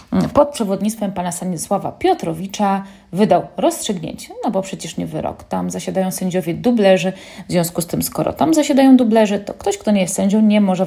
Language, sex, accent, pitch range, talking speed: Polish, female, native, 190-255 Hz, 175 wpm